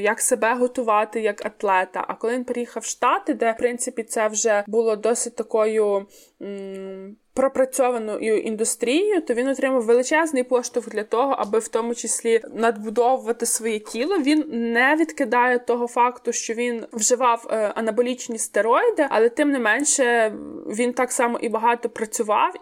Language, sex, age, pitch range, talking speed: Ukrainian, female, 20-39, 225-265 Hz, 150 wpm